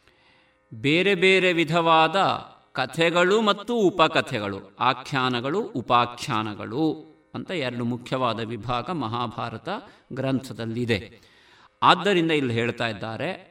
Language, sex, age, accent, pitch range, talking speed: Kannada, male, 50-69, native, 115-185 Hz, 80 wpm